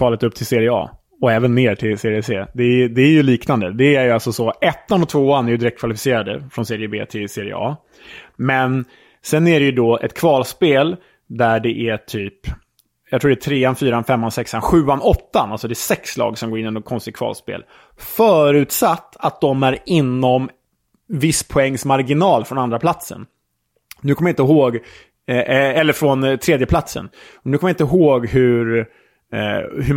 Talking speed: 195 wpm